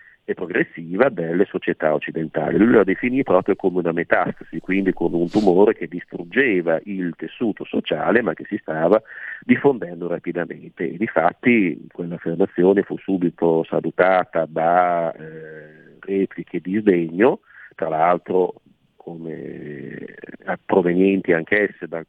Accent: native